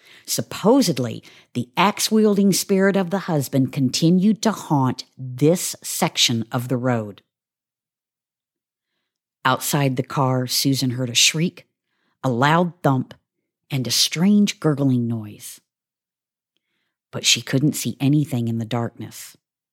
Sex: female